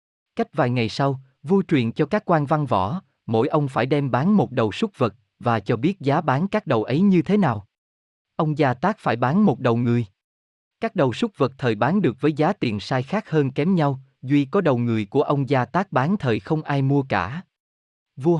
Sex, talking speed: male, 225 wpm